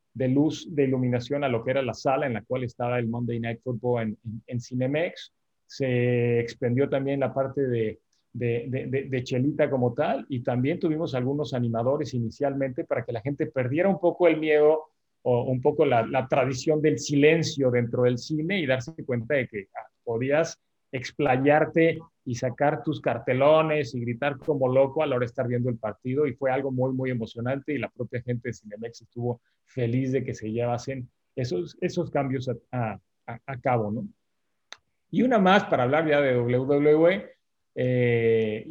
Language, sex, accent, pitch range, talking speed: Spanish, male, Mexican, 120-150 Hz, 185 wpm